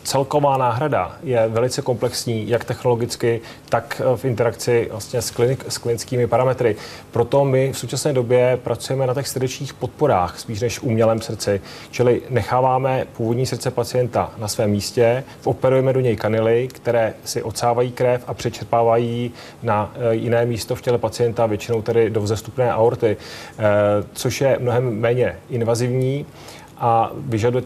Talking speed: 140 wpm